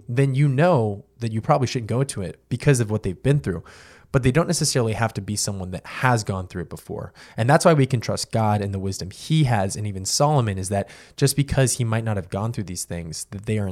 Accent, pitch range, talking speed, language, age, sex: American, 95-130 Hz, 265 wpm, English, 20-39, male